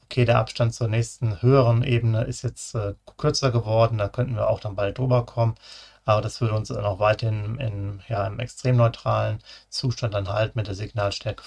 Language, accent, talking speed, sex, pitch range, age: German, German, 205 wpm, male, 110-125 Hz, 30-49